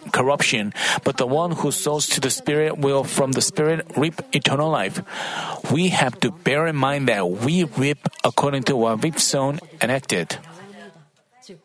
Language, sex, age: Korean, male, 40-59